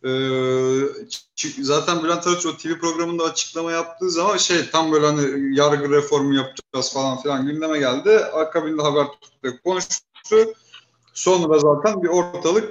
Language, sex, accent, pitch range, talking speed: Turkish, male, native, 130-165 Hz, 140 wpm